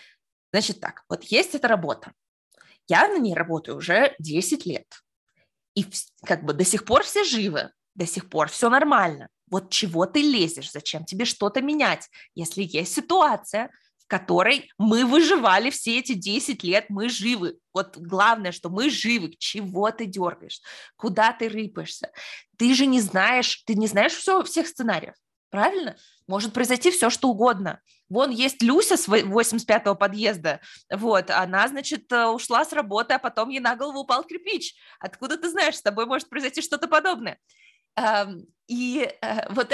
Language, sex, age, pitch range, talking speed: Russian, female, 20-39, 200-280 Hz, 155 wpm